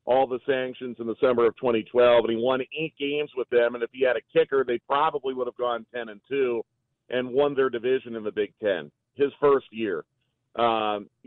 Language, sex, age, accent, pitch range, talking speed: English, male, 40-59, American, 120-150 Hz, 220 wpm